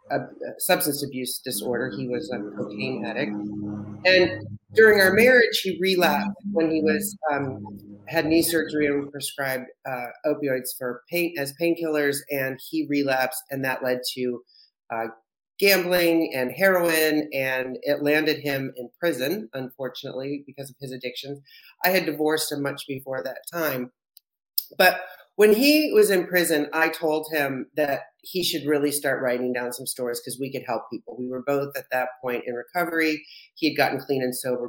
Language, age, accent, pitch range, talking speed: English, 30-49, American, 130-165 Hz, 170 wpm